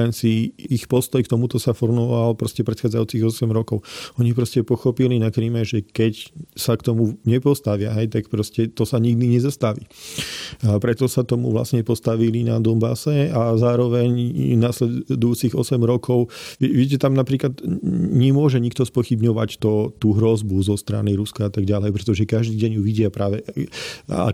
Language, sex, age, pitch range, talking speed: Slovak, male, 40-59, 110-120 Hz, 145 wpm